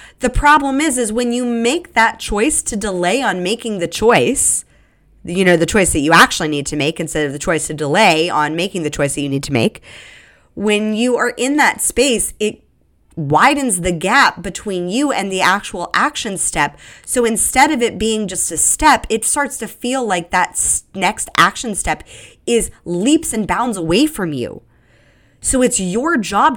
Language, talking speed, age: English, 190 wpm, 20-39